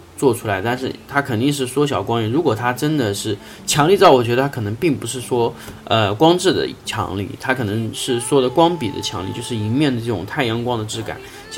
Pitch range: 105-130 Hz